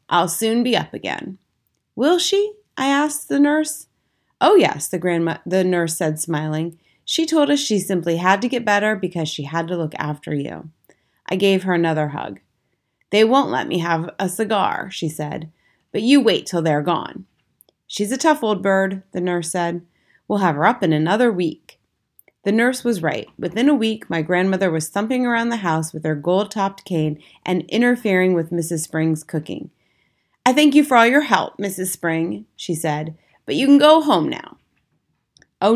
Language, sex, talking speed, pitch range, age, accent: English, female, 190 wpm, 165-230 Hz, 30-49, American